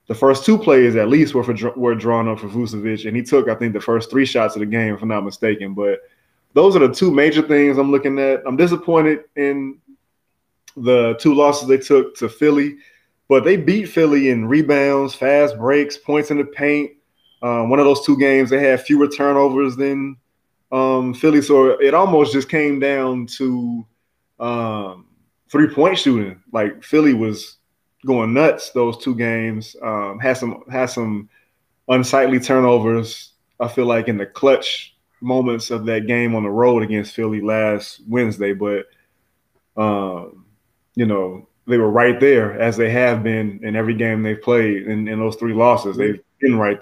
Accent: American